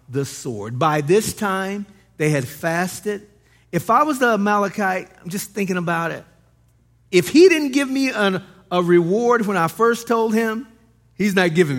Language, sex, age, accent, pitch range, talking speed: English, male, 50-69, American, 130-190 Hz, 170 wpm